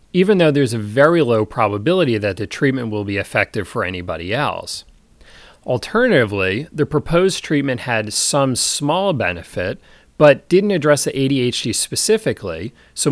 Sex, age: male, 40-59